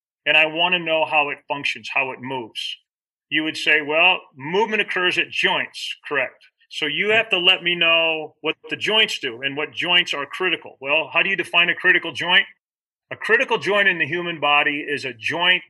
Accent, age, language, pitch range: American, 40-59, English, 140-180 Hz